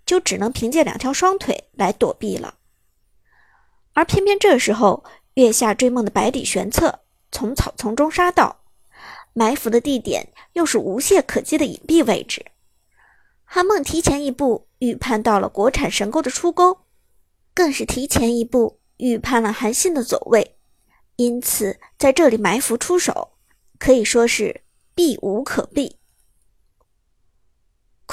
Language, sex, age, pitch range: Chinese, male, 50-69, 230-345 Hz